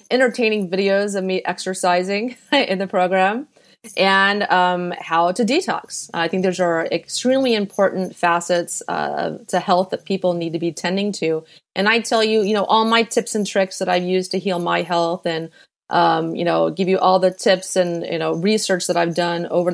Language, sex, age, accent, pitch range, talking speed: English, female, 30-49, American, 170-205 Hz, 200 wpm